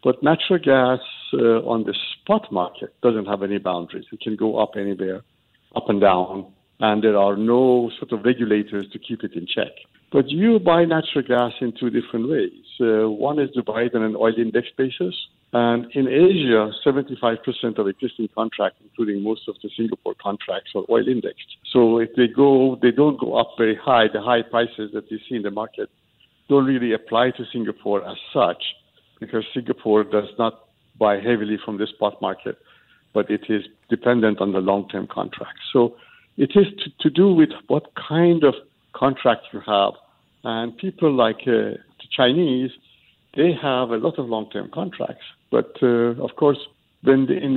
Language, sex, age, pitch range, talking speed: English, male, 60-79, 110-135 Hz, 185 wpm